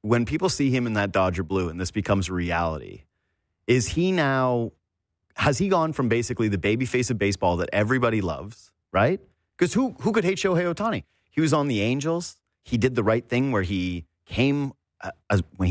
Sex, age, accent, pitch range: male, 30-49, American, 95-130 Hz